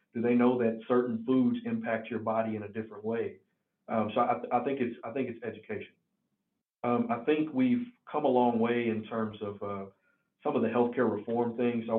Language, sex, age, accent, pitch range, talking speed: English, male, 40-59, American, 110-125 Hz, 215 wpm